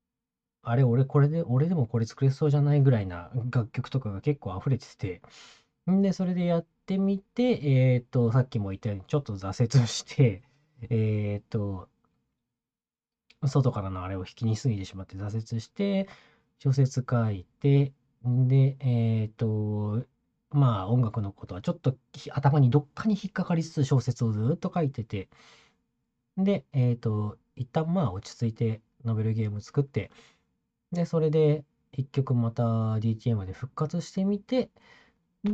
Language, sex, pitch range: Japanese, male, 110-155 Hz